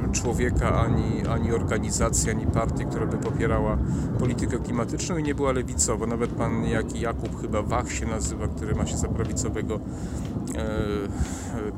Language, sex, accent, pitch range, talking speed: Polish, male, native, 105-125 Hz, 150 wpm